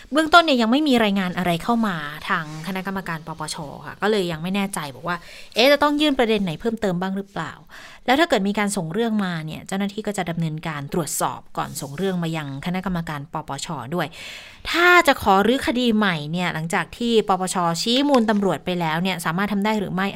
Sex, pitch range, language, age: female, 165-210 Hz, Thai, 20-39